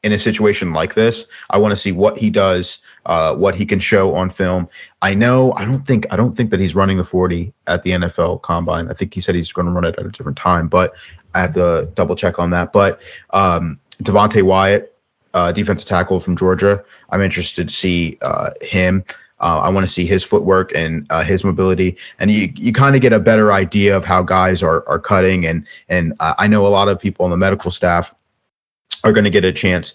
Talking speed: 230 wpm